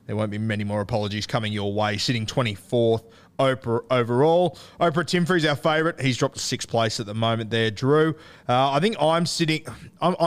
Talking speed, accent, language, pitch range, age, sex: 200 wpm, Australian, English, 110-145 Hz, 20-39, male